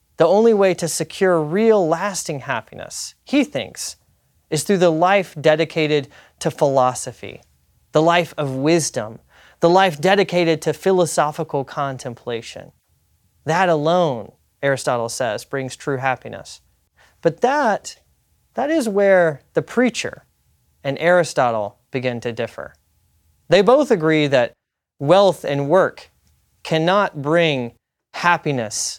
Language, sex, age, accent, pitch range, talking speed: English, male, 30-49, American, 125-175 Hz, 115 wpm